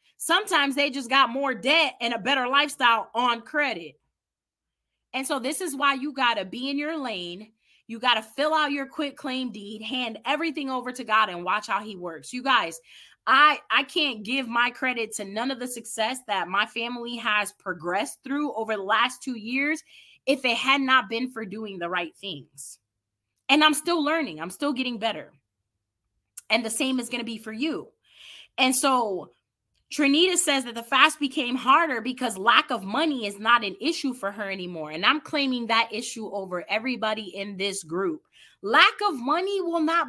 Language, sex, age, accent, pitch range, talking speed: English, female, 20-39, American, 215-295 Hz, 195 wpm